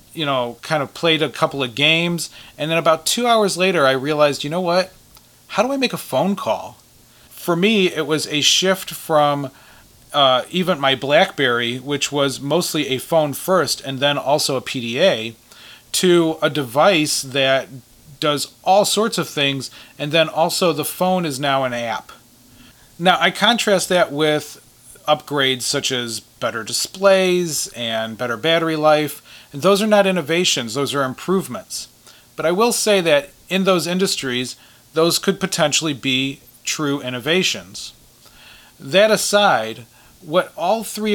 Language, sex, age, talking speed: English, male, 30-49, 155 wpm